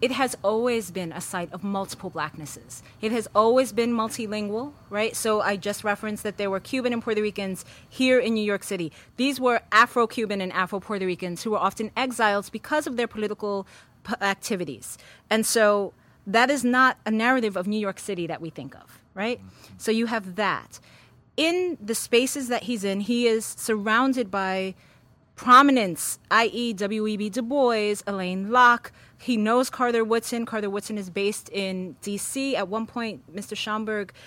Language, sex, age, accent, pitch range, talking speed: English, female, 30-49, American, 190-230 Hz, 170 wpm